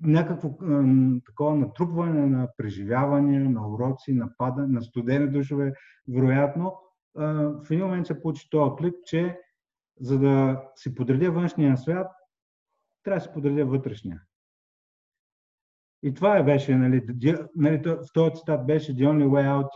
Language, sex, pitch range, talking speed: Bulgarian, male, 130-165 Hz, 130 wpm